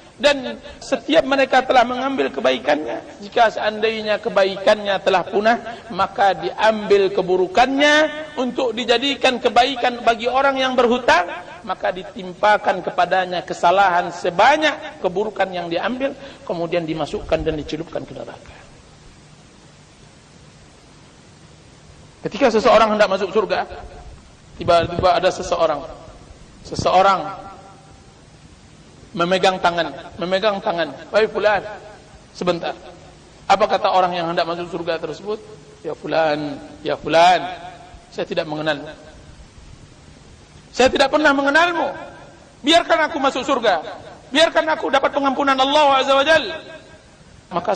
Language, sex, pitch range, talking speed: Indonesian, male, 170-255 Hz, 105 wpm